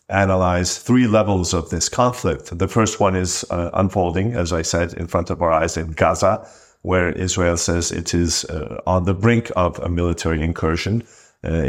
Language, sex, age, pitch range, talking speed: English, male, 50-69, 85-100 Hz, 185 wpm